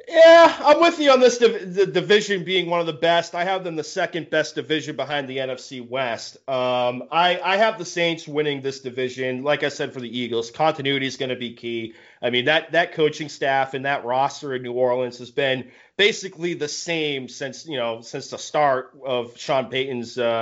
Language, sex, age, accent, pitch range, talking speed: English, male, 30-49, American, 125-160 Hz, 210 wpm